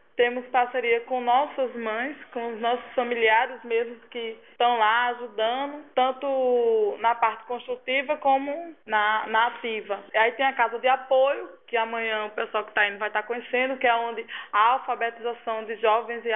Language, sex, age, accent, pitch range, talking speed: Portuguese, female, 20-39, Brazilian, 230-280 Hz, 170 wpm